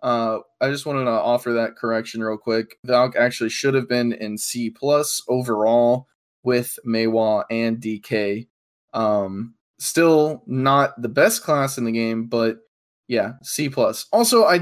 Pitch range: 115-145 Hz